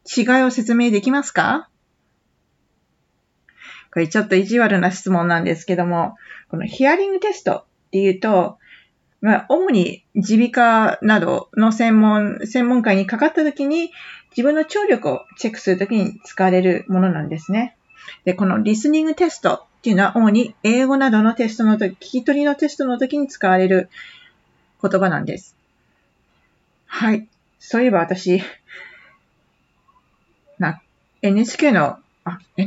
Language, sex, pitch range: Japanese, female, 185-250 Hz